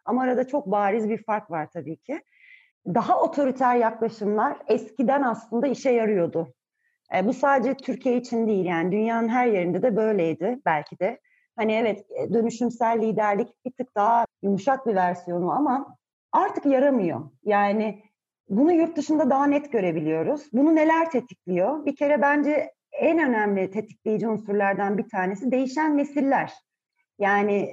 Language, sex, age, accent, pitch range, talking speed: Turkish, female, 40-59, native, 210-290 Hz, 140 wpm